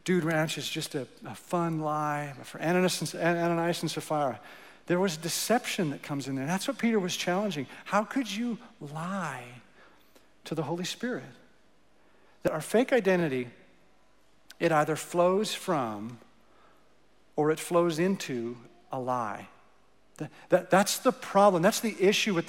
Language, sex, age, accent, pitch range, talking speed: English, male, 50-69, American, 165-210 Hz, 155 wpm